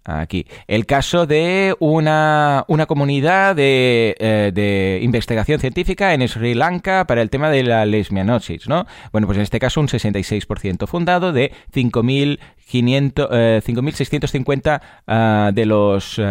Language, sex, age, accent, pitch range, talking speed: Spanish, male, 20-39, Spanish, 105-150 Hz, 130 wpm